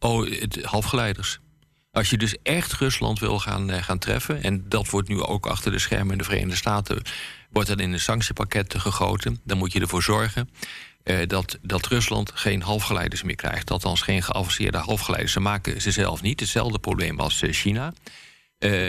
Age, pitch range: 50-69, 95-110 Hz